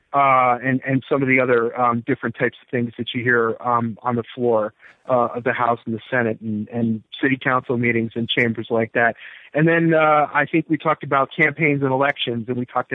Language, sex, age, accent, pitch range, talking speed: English, male, 40-59, American, 120-140 Hz, 225 wpm